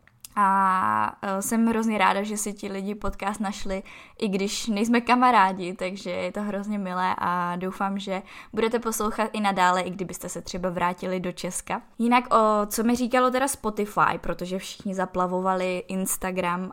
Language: Czech